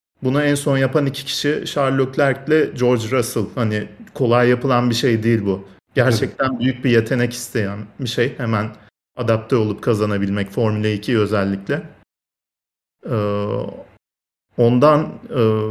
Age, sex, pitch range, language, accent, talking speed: 40-59, male, 105-130 Hz, Turkish, native, 125 wpm